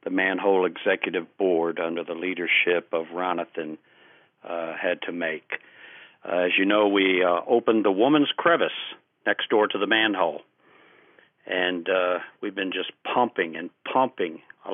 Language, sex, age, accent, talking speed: English, male, 50-69, American, 145 wpm